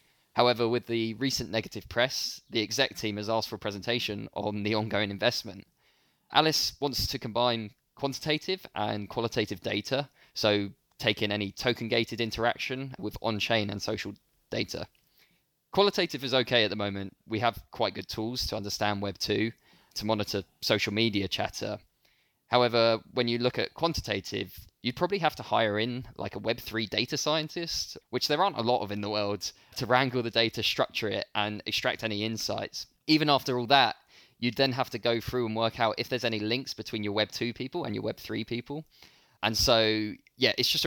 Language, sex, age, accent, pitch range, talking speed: English, male, 20-39, British, 105-125 Hz, 185 wpm